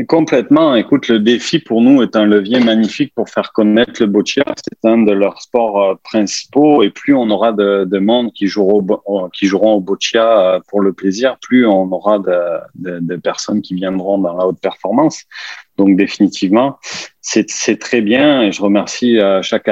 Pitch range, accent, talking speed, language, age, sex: 95-115 Hz, French, 190 wpm, French, 30-49, male